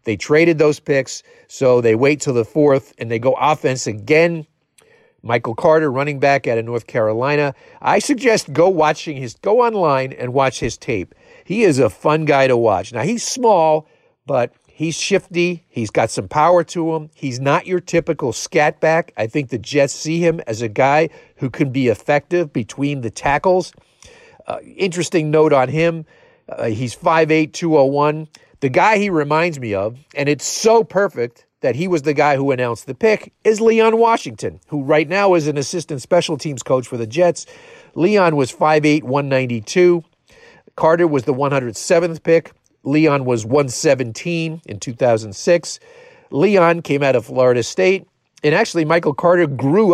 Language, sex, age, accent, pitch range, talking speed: English, male, 50-69, American, 130-170 Hz, 170 wpm